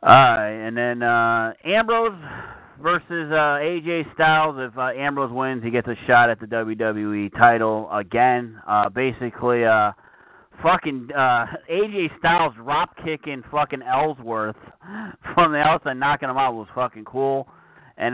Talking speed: 140 wpm